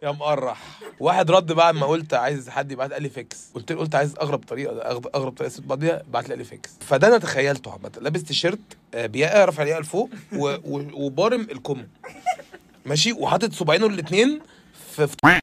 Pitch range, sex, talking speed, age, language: 155-205 Hz, male, 180 wpm, 20-39, Arabic